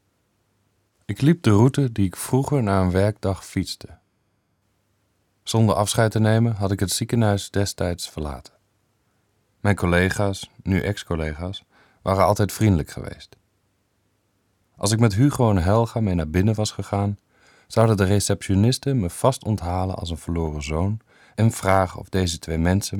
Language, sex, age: English, male, 40-59